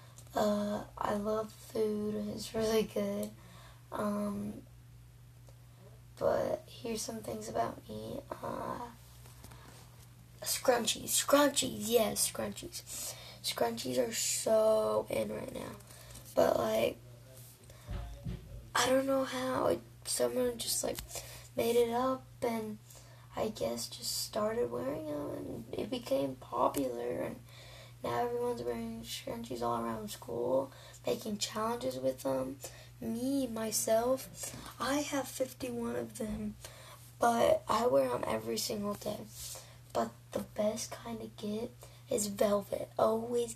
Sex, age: female, 10-29